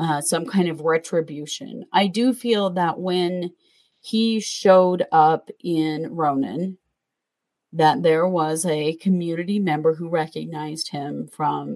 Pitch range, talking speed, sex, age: 155-185 Hz, 130 wpm, female, 30-49